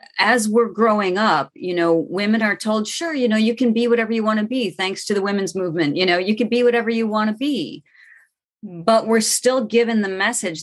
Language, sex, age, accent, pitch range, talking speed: English, female, 30-49, American, 160-210 Hz, 230 wpm